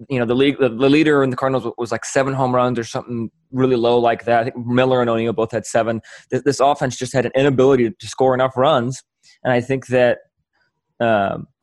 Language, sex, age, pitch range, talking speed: English, male, 20-39, 115-130 Hz, 225 wpm